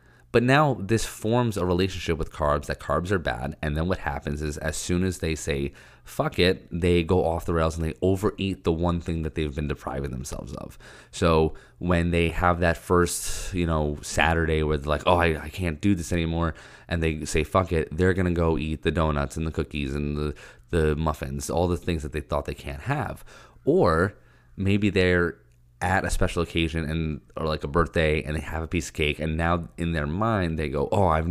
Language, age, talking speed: English, 20-39, 220 wpm